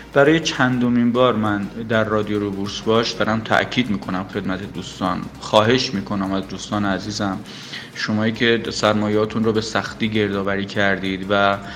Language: Persian